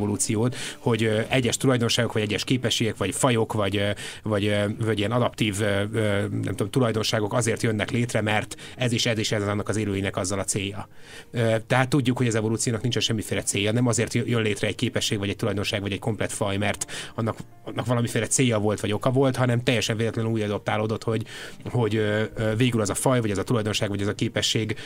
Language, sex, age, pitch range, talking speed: Hungarian, male, 30-49, 105-125 Hz, 195 wpm